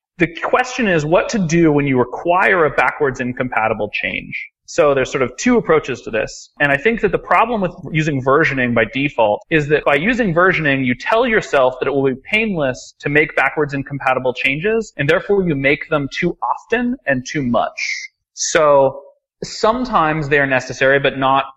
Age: 30-49